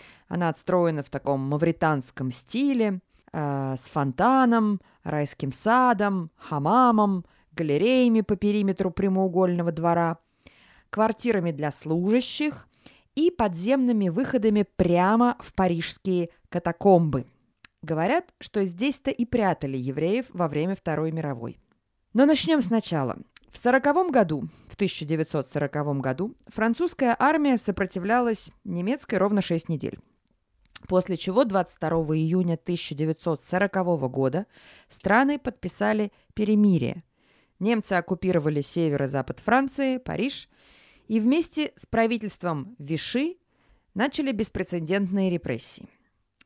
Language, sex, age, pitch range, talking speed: Russian, female, 20-39, 160-235 Hz, 95 wpm